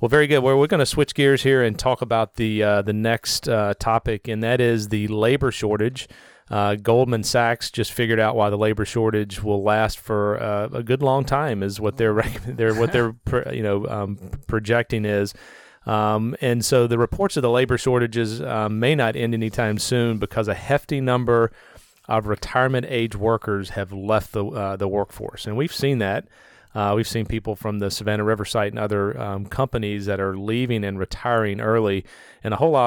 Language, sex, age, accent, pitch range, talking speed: English, male, 40-59, American, 105-120 Hz, 195 wpm